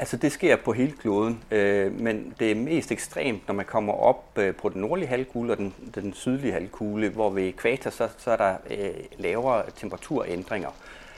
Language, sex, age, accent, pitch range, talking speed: Danish, male, 30-49, native, 85-125 Hz, 160 wpm